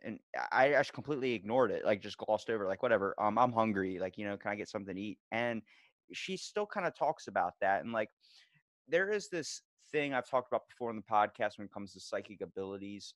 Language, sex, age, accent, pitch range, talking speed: English, male, 20-39, American, 100-115 Hz, 235 wpm